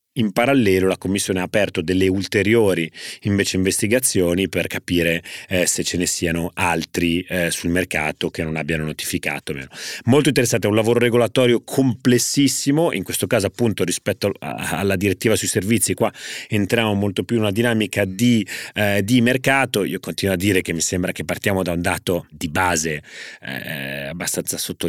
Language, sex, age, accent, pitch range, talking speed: Italian, male, 30-49, native, 90-120 Hz, 165 wpm